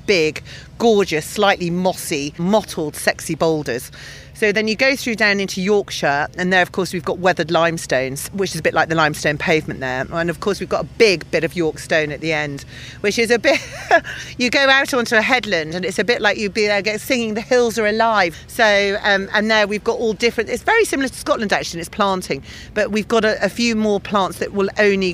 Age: 40-59